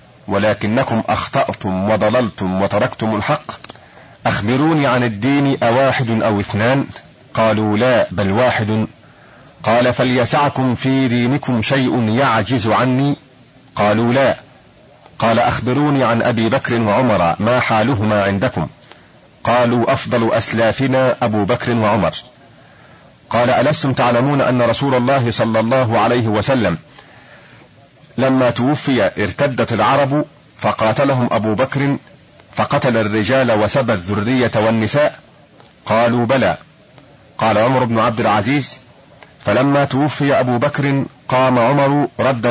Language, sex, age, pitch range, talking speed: Arabic, male, 40-59, 110-135 Hz, 105 wpm